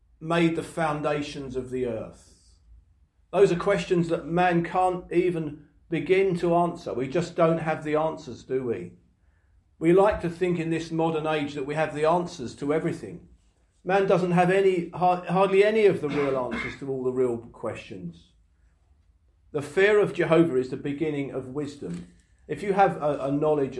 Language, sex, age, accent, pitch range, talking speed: English, male, 40-59, British, 120-170 Hz, 170 wpm